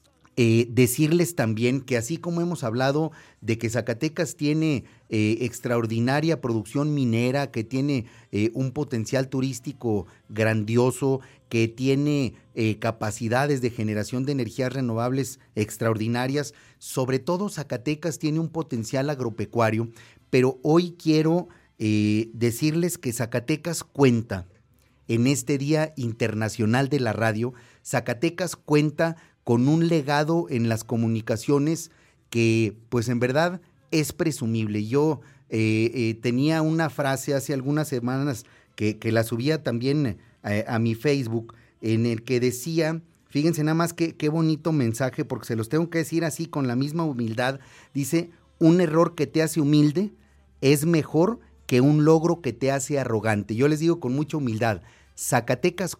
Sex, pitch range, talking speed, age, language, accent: male, 115-155 Hz, 140 wpm, 40-59, Spanish, Mexican